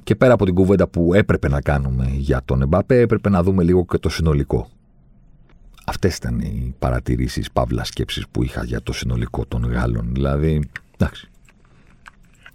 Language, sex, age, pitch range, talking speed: Greek, male, 40-59, 70-95 Hz, 165 wpm